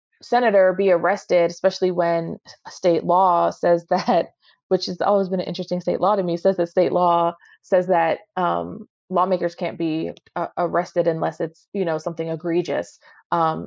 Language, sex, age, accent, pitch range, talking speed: English, female, 20-39, American, 165-185 Hz, 165 wpm